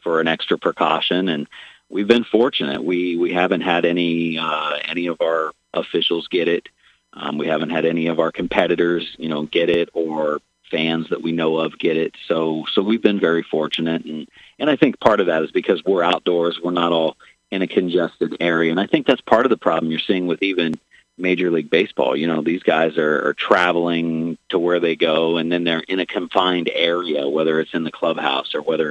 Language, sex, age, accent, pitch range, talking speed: English, male, 40-59, American, 80-85 Hz, 215 wpm